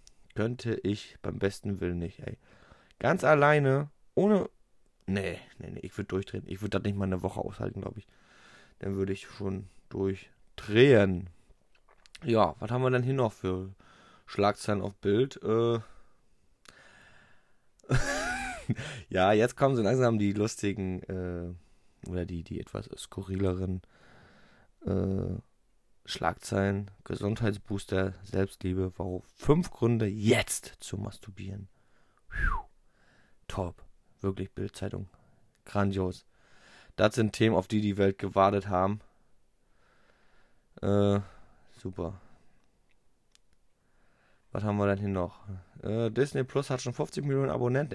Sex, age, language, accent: male, 20-39, German, German